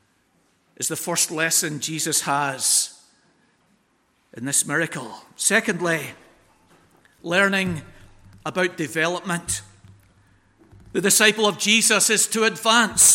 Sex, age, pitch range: male, 50-69, 175-230 Hz